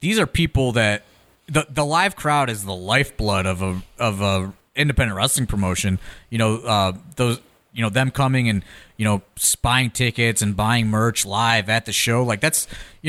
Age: 30-49